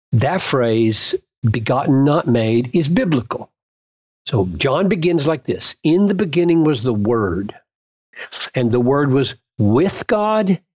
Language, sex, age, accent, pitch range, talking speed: English, male, 50-69, American, 125-190 Hz, 135 wpm